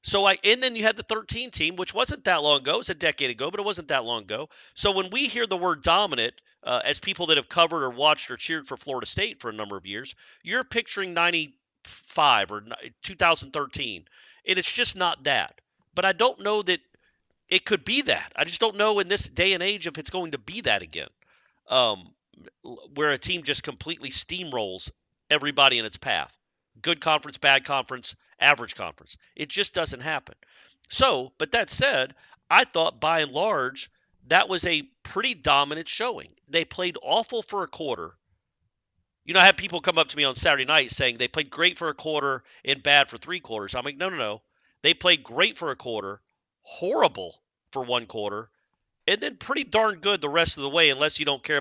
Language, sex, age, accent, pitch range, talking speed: English, male, 40-59, American, 135-195 Hz, 210 wpm